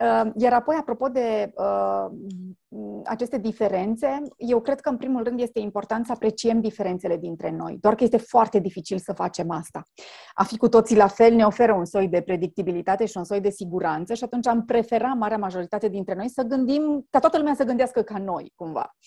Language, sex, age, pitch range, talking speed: Romanian, female, 30-49, 190-250 Hz, 195 wpm